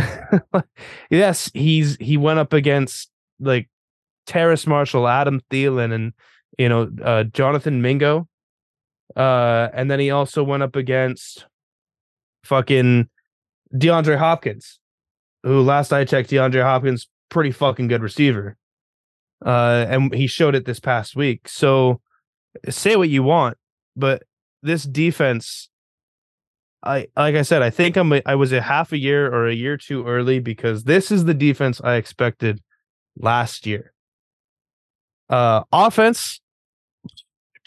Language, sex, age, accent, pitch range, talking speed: English, male, 20-39, American, 120-150 Hz, 135 wpm